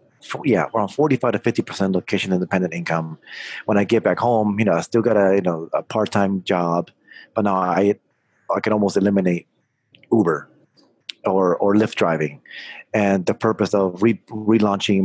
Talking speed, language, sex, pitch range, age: 170 wpm, English, male, 90-105 Hz, 30-49